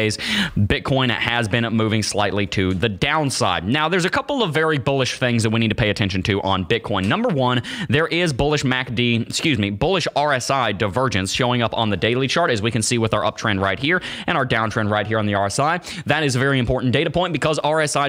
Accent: American